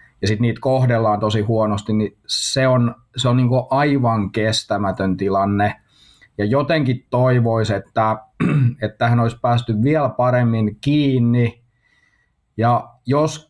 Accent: native